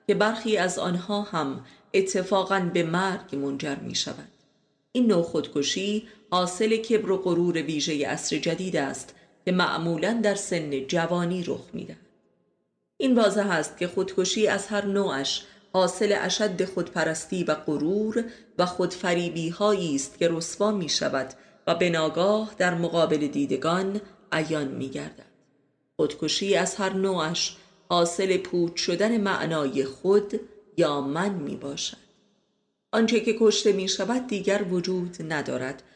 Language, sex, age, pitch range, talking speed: Persian, female, 30-49, 165-205 Hz, 130 wpm